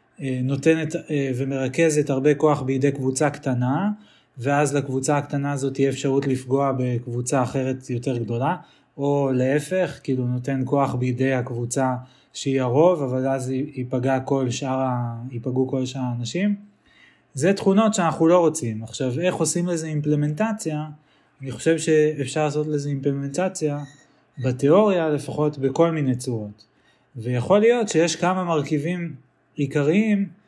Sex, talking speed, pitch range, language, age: male, 125 wpm, 130-160 Hz, Hebrew, 20-39